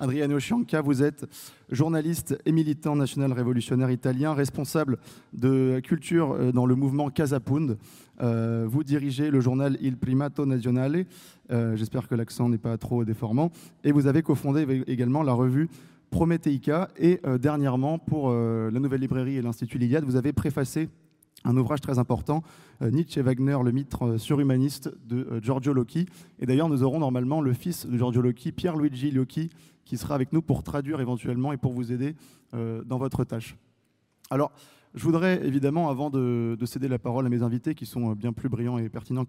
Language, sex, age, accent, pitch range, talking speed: French, male, 20-39, French, 125-150 Hz, 175 wpm